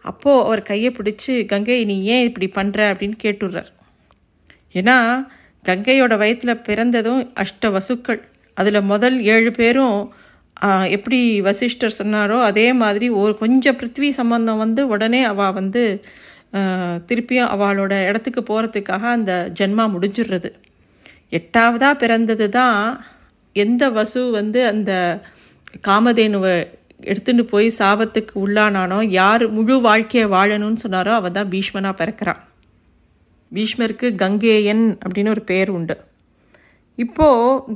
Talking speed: 110 wpm